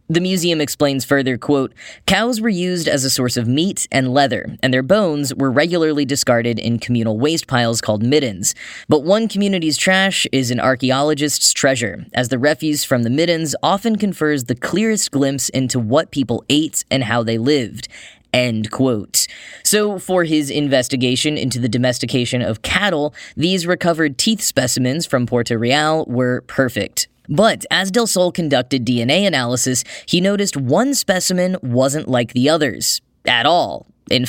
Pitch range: 125-170 Hz